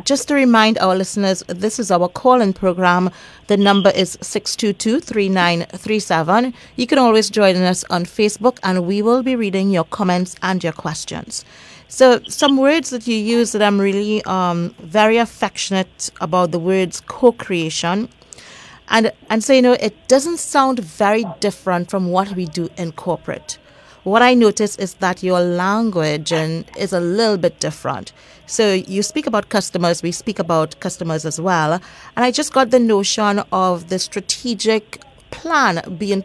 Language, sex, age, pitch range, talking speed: English, female, 30-49, 180-225 Hz, 170 wpm